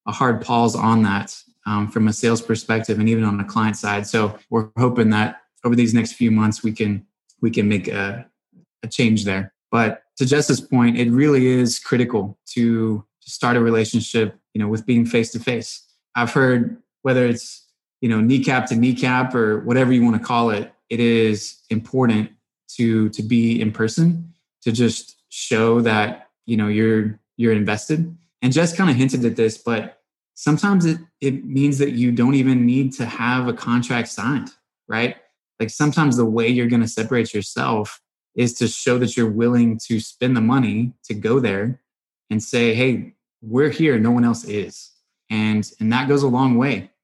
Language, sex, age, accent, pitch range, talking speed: English, male, 20-39, American, 110-125 Hz, 185 wpm